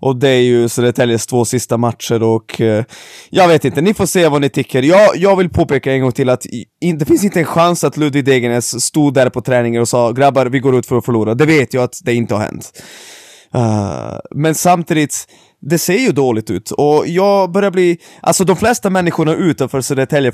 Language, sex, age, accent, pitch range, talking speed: Swedish, male, 20-39, native, 125-170 Hz, 225 wpm